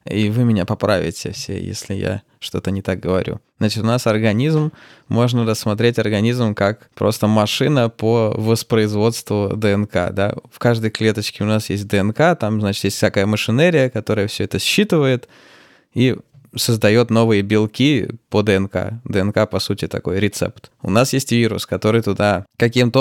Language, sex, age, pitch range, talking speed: Russian, male, 20-39, 105-120 Hz, 155 wpm